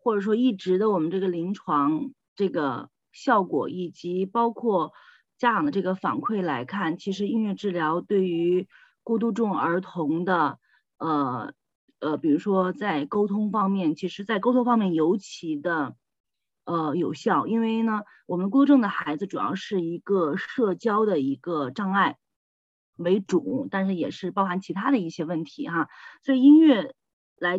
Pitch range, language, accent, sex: 175-235 Hz, Chinese, native, female